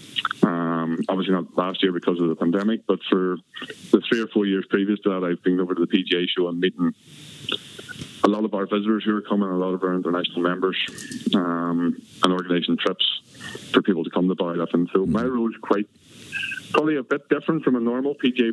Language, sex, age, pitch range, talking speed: English, male, 30-49, 90-110 Hz, 210 wpm